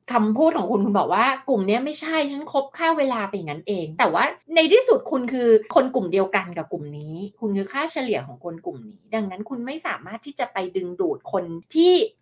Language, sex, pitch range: Thai, female, 195-280 Hz